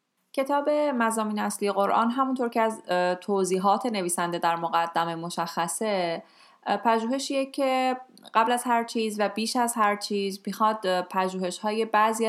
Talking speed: 125 wpm